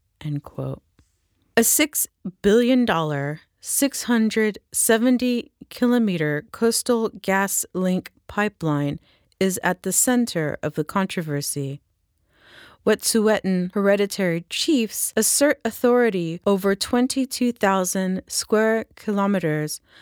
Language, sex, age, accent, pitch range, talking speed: English, female, 30-49, American, 160-220 Hz, 70 wpm